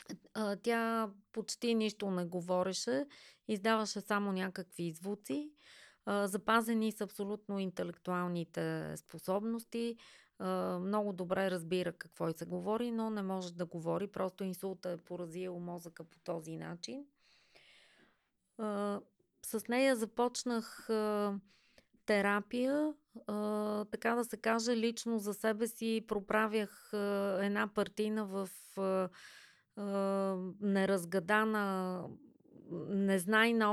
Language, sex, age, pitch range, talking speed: Bulgarian, female, 30-49, 195-225 Hz, 95 wpm